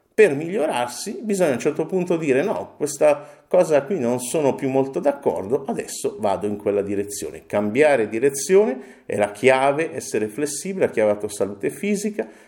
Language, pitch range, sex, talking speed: Italian, 110-165 Hz, male, 170 wpm